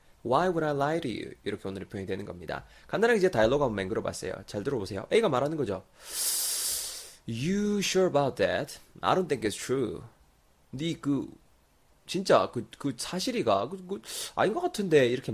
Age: 20-39